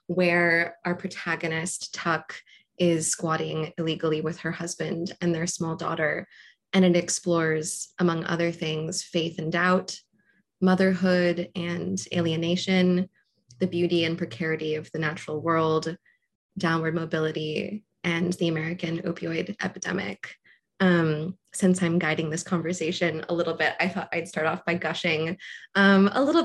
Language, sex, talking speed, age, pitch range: English, female, 135 wpm, 20-39, 165-190 Hz